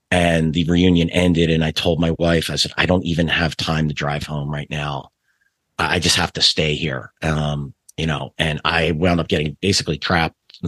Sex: male